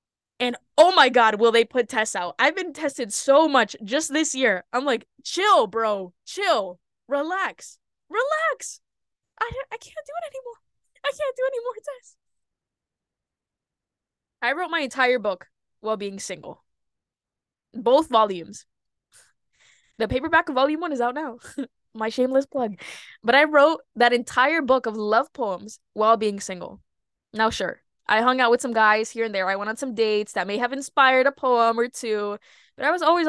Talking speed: 175 wpm